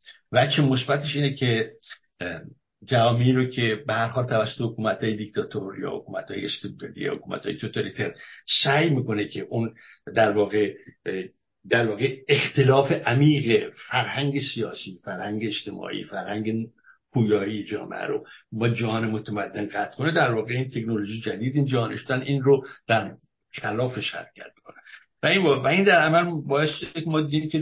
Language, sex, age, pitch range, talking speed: Persian, male, 60-79, 110-140 Hz, 140 wpm